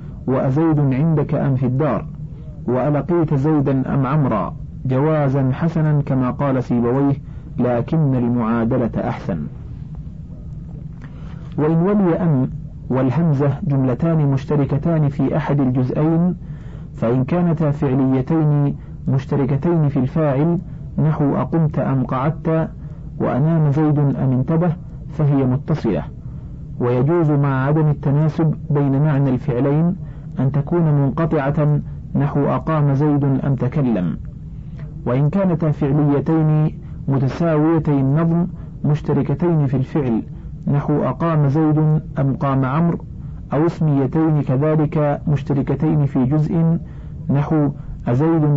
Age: 40-59